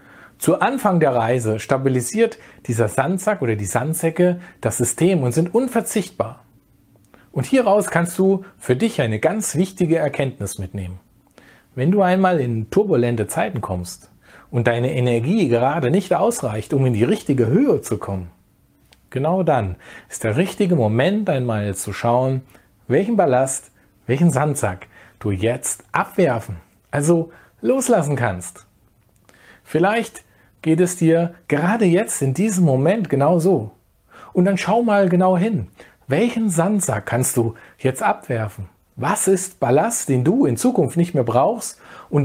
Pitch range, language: 110-180 Hz, German